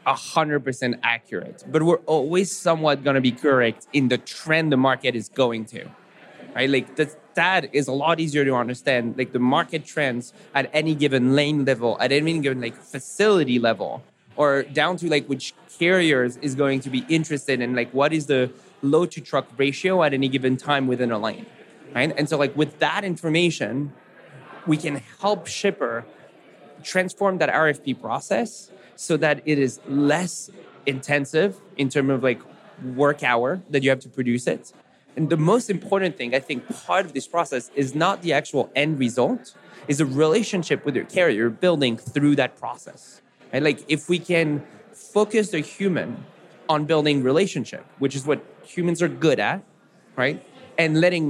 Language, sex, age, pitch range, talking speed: English, male, 20-39, 130-165 Hz, 175 wpm